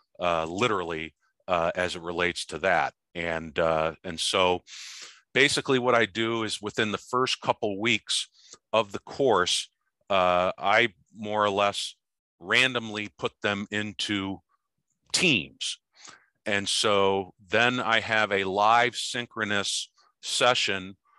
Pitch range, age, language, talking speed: 95-110 Hz, 50-69, English, 125 wpm